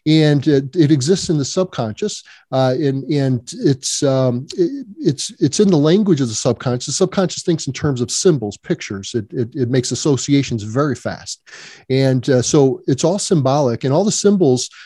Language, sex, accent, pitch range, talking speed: English, male, American, 130-160 Hz, 180 wpm